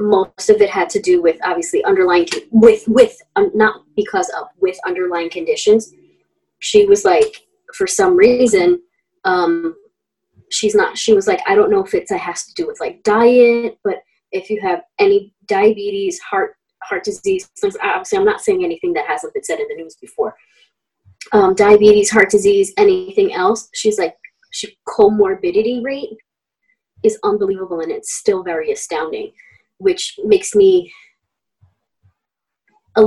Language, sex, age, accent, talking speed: English, female, 20-39, American, 160 wpm